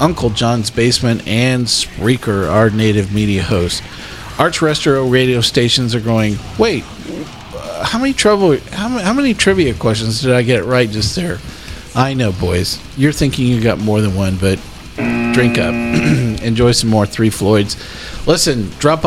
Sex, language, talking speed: male, English, 155 wpm